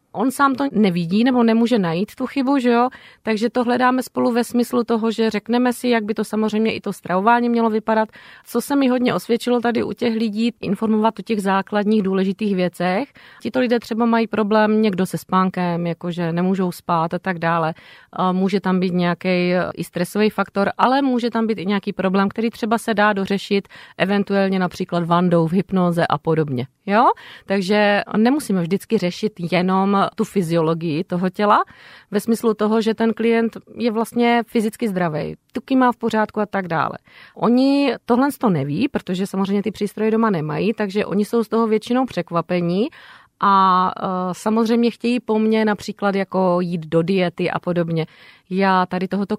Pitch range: 185-230 Hz